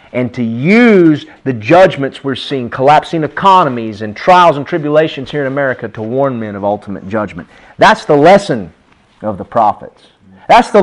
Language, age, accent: English, 40-59, American